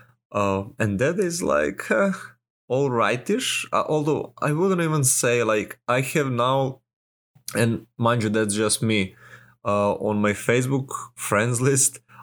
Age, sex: 20-39, male